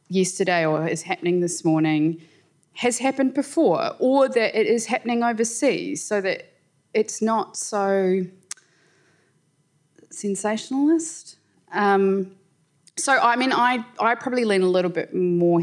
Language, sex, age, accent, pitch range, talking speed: English, female, 20-39, Australian, 155-200 Hz, 125 wpm